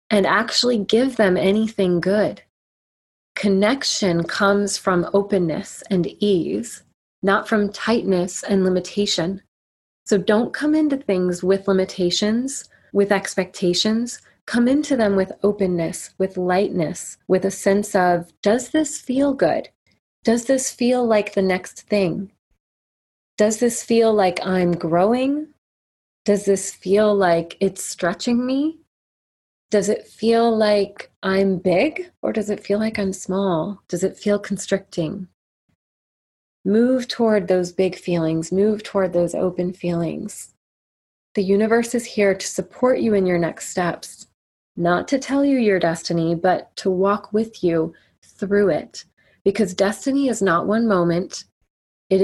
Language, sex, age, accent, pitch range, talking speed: English, female, 30-49, American, 180-220 Hz, 135 wpm